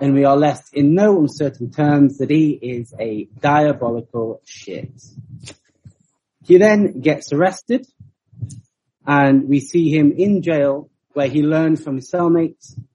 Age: 30-49